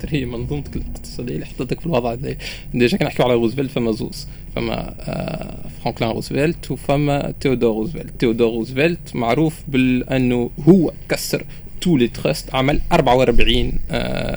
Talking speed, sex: 130 wpm, male